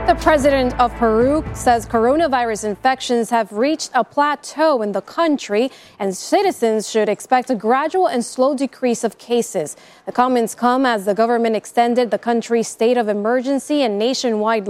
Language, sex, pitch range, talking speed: English, female, 215-255 Hz, 160 wpm